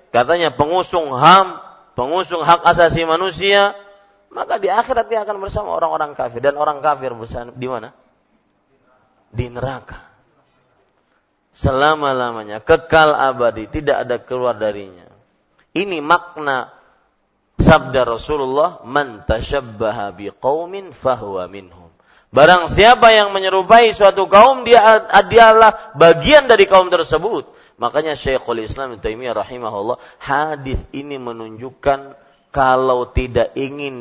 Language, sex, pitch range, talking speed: Malay, male, 120-180 Hz, 110 wpm